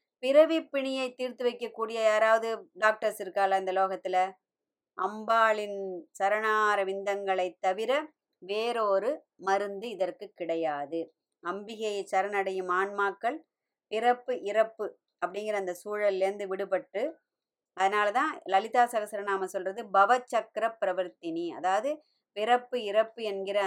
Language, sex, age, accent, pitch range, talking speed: Tamil, male, 30-49, native, 190-225 Hz, 95 wpm